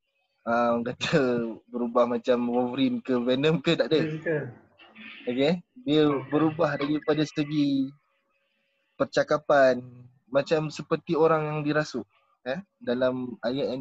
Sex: male